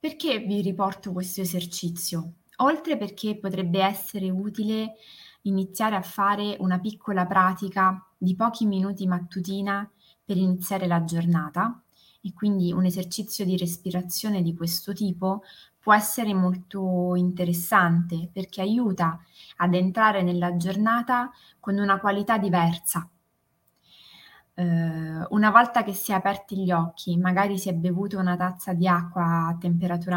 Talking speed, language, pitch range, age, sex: 130 wpm, Italian, 175-205 Hz, 20-39, female